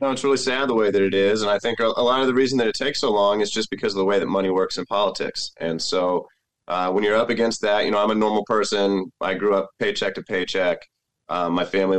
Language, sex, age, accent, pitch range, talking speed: English, male, 30-49, American, 100-130 Hz, 280 wpm